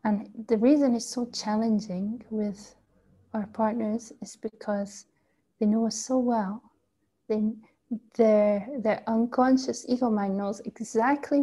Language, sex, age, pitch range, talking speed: English, female, 30-49, 205-240 Hz, 120 wpm